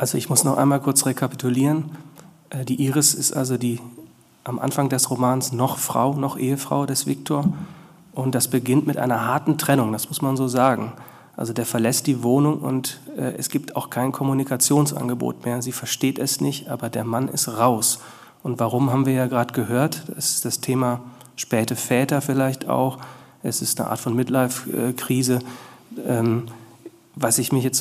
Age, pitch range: 40-59, 125-140 Hz